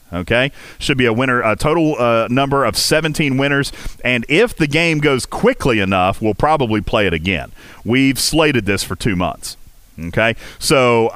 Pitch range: 110-170 Hz